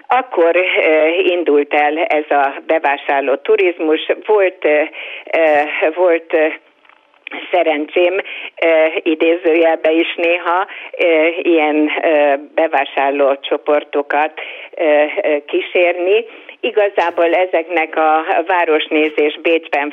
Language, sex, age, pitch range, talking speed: Hungarian, female, 50-69, 150-180 Hz, 65 wpm